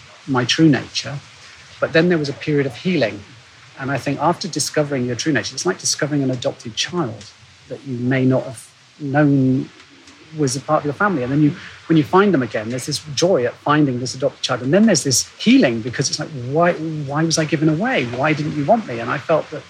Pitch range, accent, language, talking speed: 125-155 Hz, British, English, 230 wpm